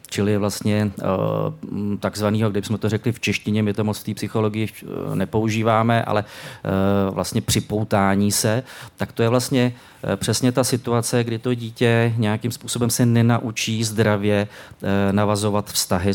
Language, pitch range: Czech, 100-115 Hz